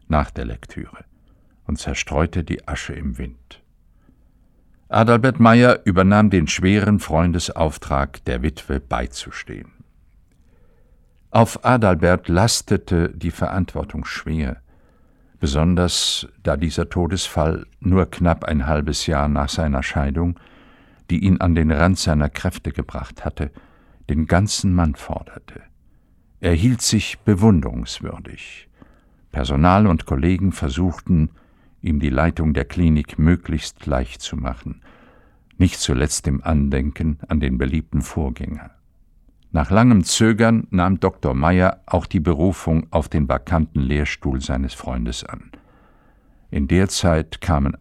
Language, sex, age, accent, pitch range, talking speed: German, male, 60-79, German, 75-95 Hz, 120 wpm